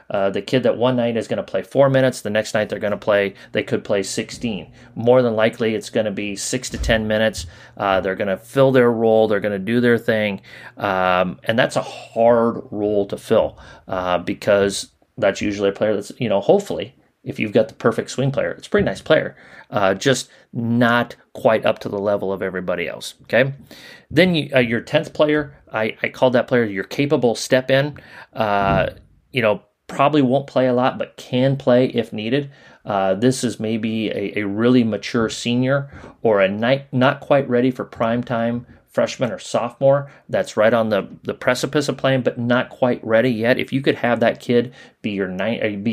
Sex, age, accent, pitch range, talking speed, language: male, 30-49, American, 105-125 Hz, 210 wpm, English